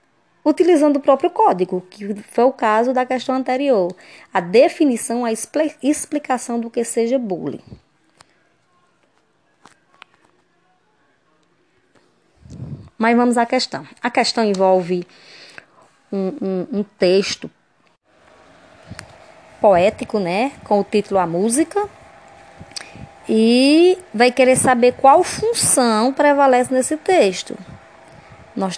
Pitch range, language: 200-275 Hz, Portuguese